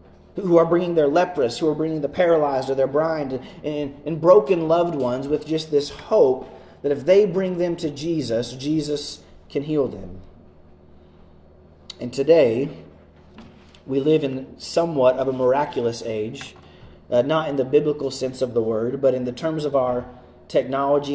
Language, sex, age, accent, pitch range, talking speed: English, male, 30-49, American, 120-155 Hz, 165 wpm